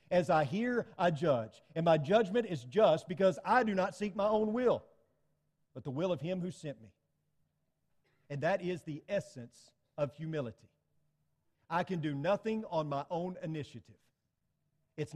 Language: English